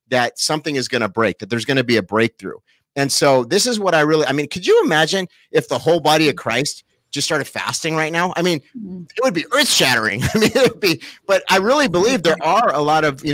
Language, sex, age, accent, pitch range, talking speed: English, male, 30-49, American, 130-165 Hz, 250 wpm